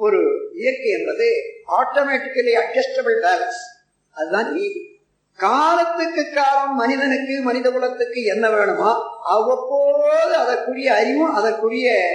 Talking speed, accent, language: 90 wpm, native, Tamil